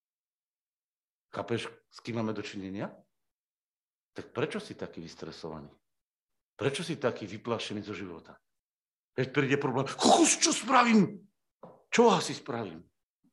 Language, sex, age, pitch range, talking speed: Slovak, male, 50-69, 105-155 Hz, 115 wpm